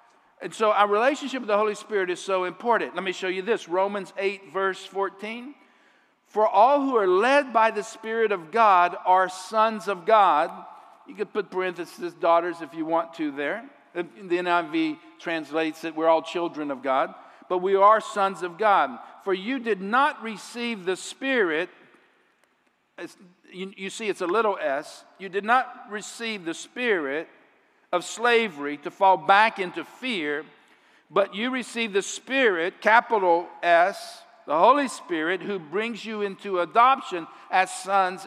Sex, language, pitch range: male, English, 185-225 Hz